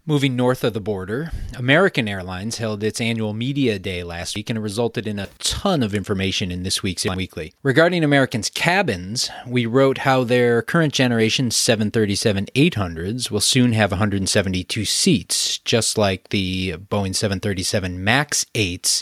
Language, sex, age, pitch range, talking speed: English, male, 30-49, 100-130 Hz, 140 wpm